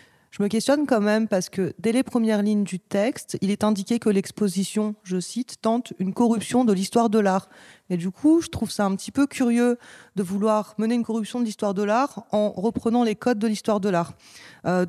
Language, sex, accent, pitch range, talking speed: French, female, French, 190-225 Hz, 220 wpm